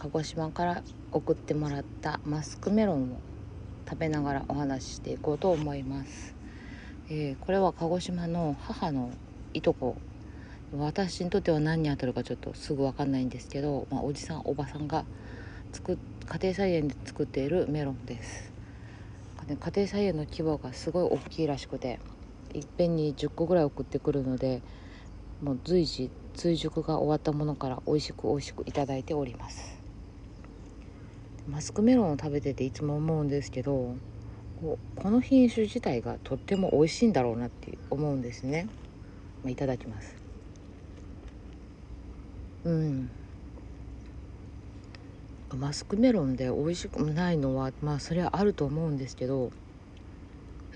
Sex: female